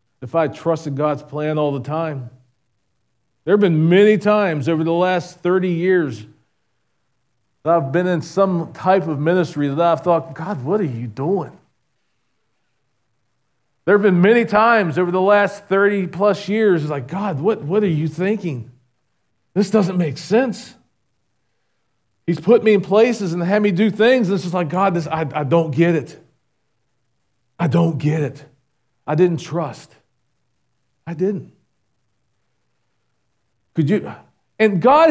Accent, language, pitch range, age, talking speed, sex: American, English, 145-225 Hz, 40-59, 155 wpm, male